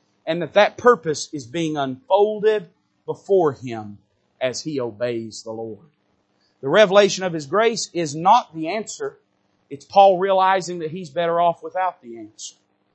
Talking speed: 155 wpm